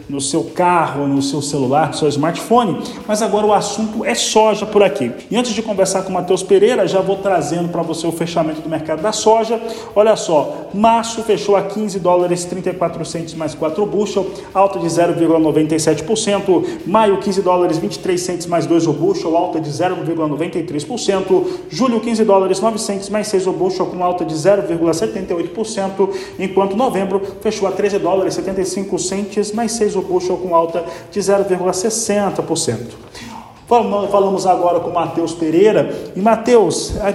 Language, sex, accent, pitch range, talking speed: Portuguese, male, Brazilian, 175-220 Hz, 155 wpm